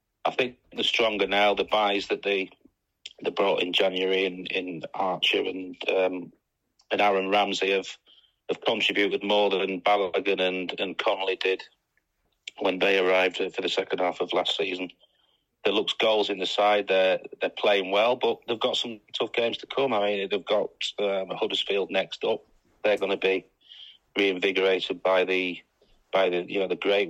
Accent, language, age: British, English, 40-59